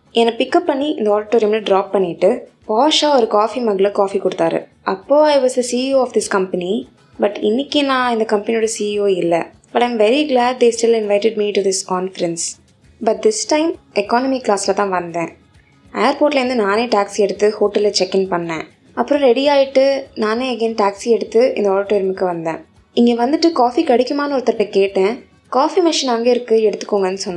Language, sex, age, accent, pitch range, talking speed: Tamil, female, 20-39, native, 190-245 Hz, 160 wpm